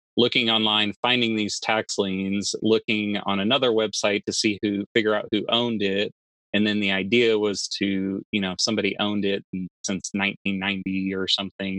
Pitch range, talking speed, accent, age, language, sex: 95-110 Hz, 175 wpm, American, 30-49, English, male